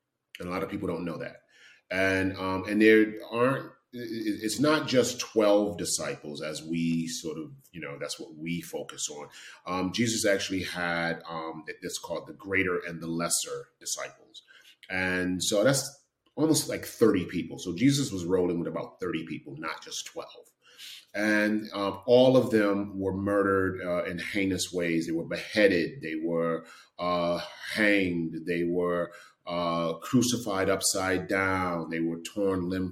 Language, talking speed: English, 160 wpm